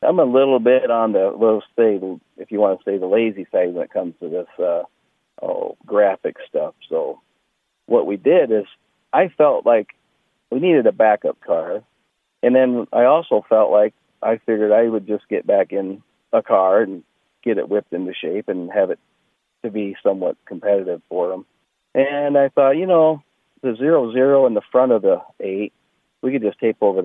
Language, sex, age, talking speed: English, male, 50-69, 190 wpm